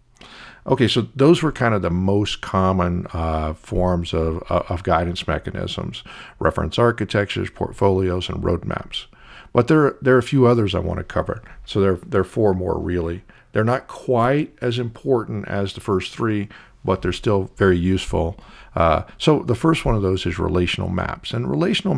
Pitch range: 90-110 Hz